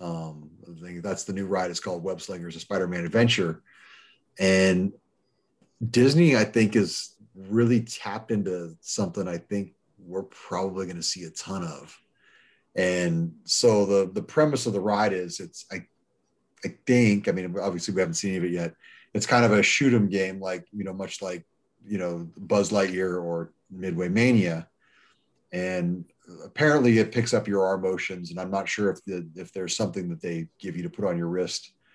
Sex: male